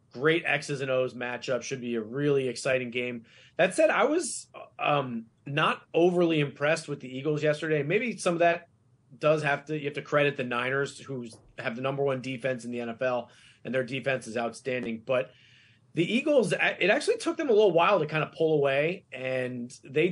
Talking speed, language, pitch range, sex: 200 wpm, English, 125-165 Hz, male